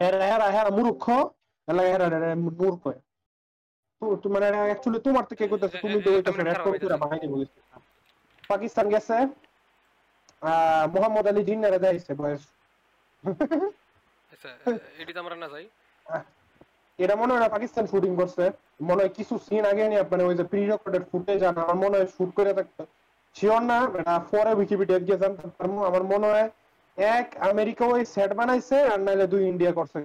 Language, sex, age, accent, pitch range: Bengali, male, 30-49, native, 170-210 Hz